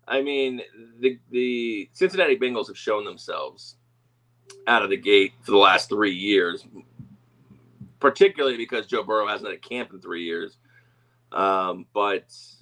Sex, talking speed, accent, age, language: male, 150 wpm, American, 30-49, English